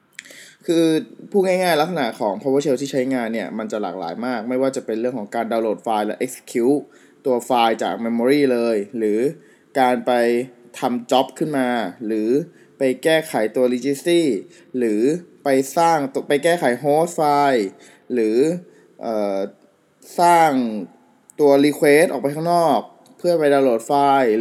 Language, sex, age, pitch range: Thai, male, 20-39, 120-155 Hz